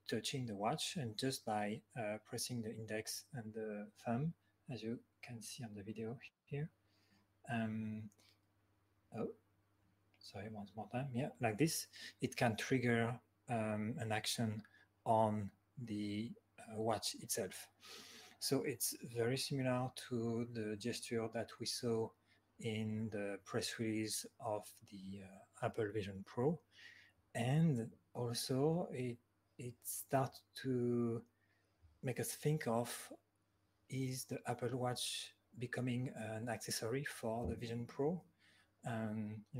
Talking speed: 125 wpm